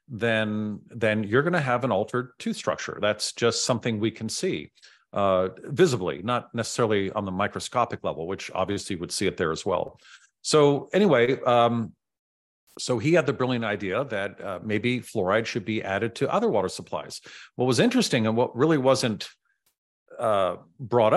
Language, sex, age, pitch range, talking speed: English, male, 50-69, 105-130 Hz, 175 wpm